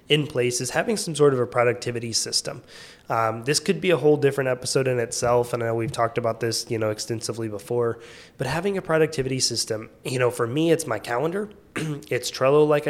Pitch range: 115-140 Hz